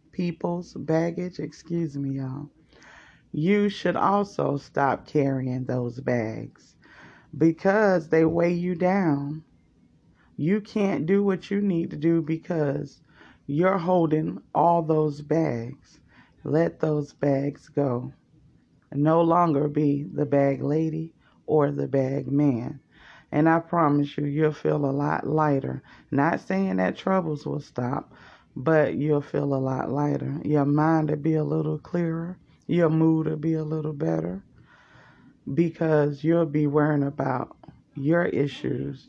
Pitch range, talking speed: 140-165 Hz, 135 wpm